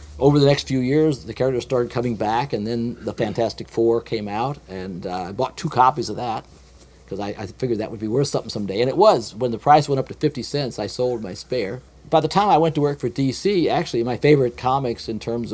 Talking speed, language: 250 wpm, English